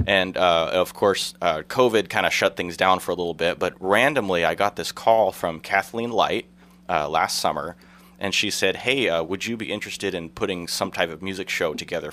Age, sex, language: 30-49, male, English